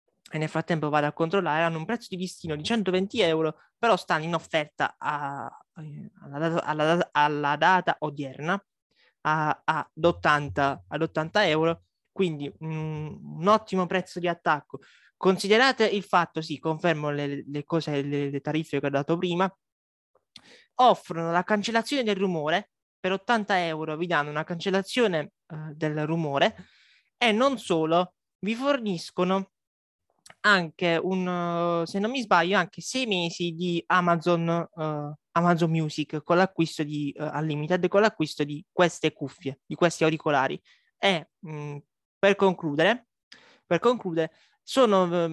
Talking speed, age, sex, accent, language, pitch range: 140 wpm, 20-39, male, native, Italian, 155-195 Hz